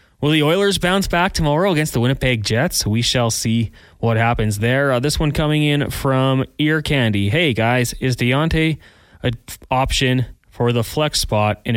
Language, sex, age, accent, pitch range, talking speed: English, male, 20-39, American, 110-135 Hz, 180 wpm